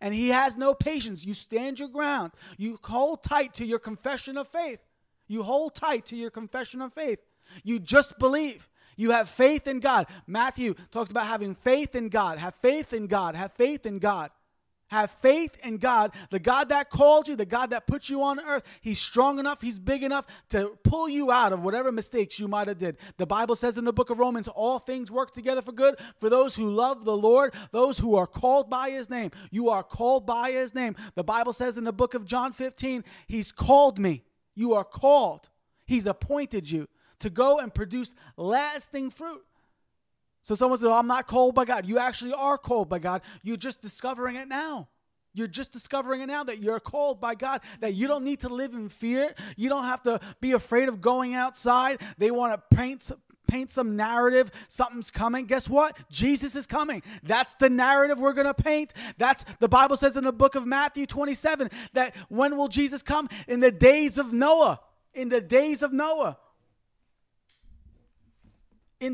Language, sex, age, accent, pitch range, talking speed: English, male, 30-49, American, 220-275 Hz, 200 wpm